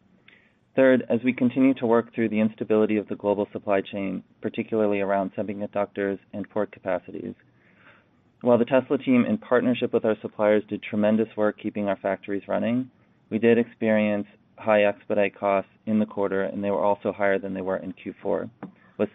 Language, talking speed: English, 175 wpm